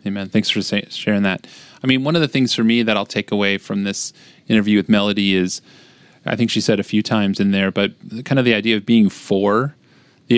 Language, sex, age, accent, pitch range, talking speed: English, male, 30-49, American, 100-120 Hz, 235 wpm